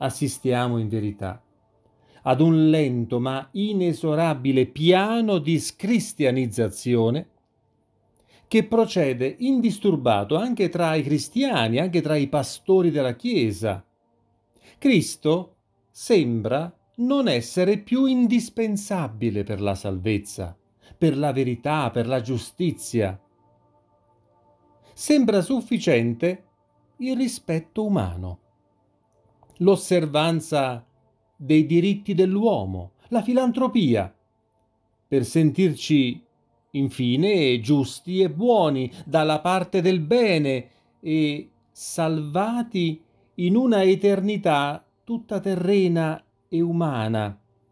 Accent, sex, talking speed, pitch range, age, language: native, male, 85 wpm, 110-185 Hz, 40-59, Italian